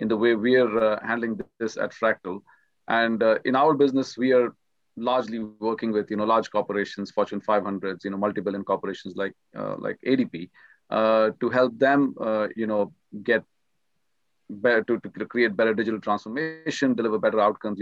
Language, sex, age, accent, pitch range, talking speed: English, male, 40-59, Indian, 110-125 Hz, 170 wpm